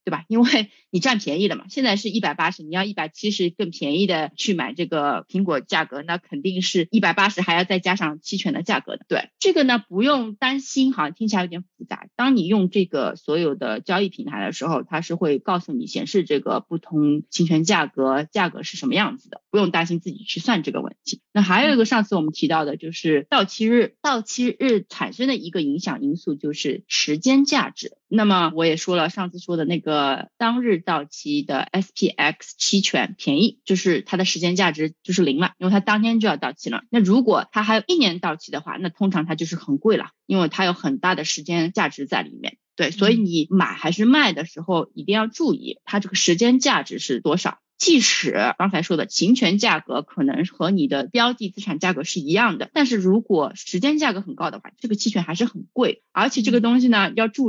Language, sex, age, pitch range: Chinese, female, 30-49, 170-235 Hz